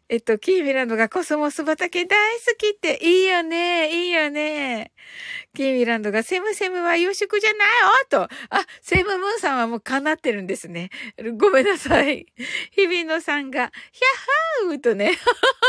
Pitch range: 240-375 Hz